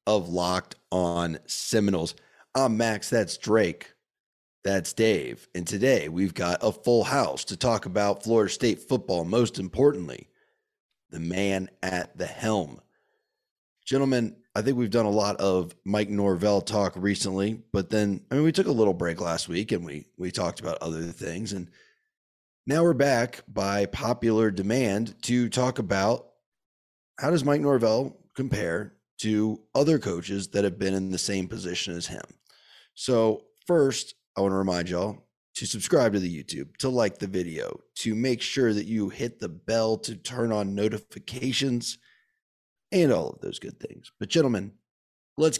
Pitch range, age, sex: 95-120 Hz, 30-49, male